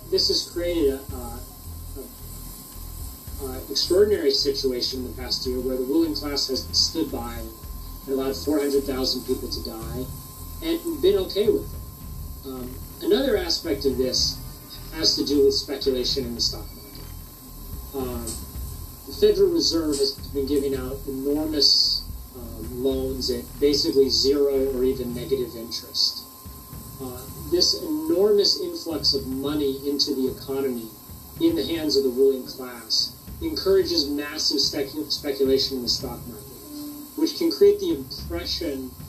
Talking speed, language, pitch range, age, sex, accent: 135 wpm, English, 130-170 Hz, 30-49, male, American